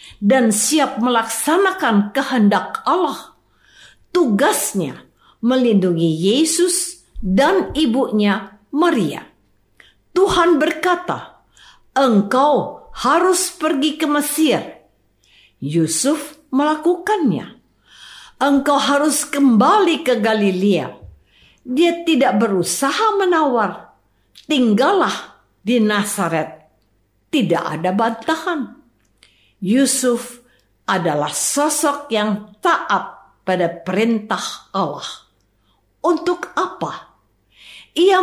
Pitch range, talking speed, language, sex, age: 195-295 Hz, 70 wpm, Indonesian, female, 50-69